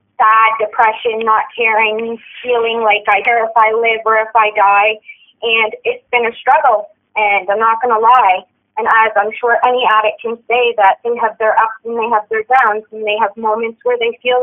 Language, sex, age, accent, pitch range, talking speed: English, female, 20-39, American, 220-260 Hz, 210 wpm